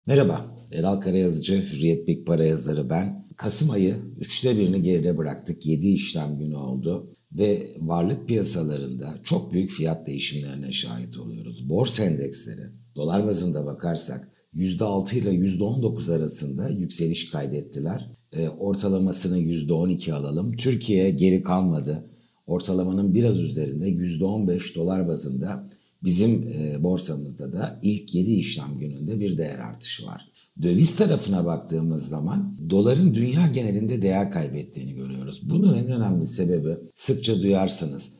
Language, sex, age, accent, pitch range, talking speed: Turkish, male, 60-79, native, 80-110 Hz, 120 wpm